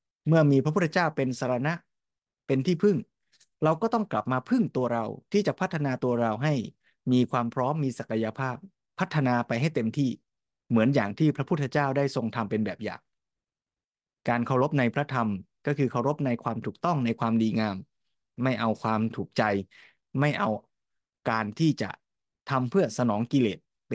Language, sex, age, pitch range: Thai, male, 20-39, 115-145 Hz